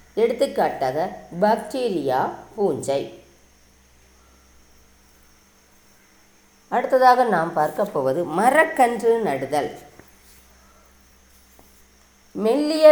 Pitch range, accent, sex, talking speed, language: 140-230 Hz, native, female, 45 wpm, Tamil